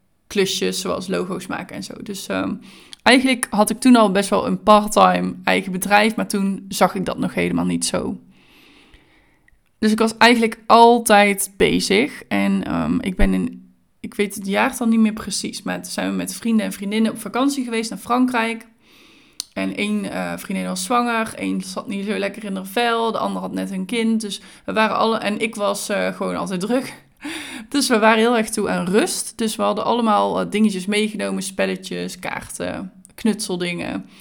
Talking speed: 190 wpm